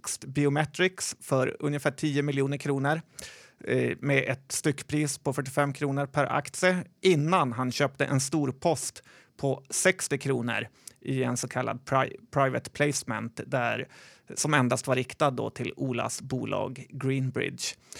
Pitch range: 130-150 Hz